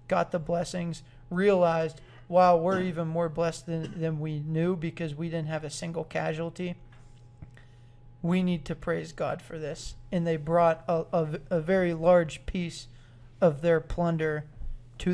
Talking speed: 155 wpm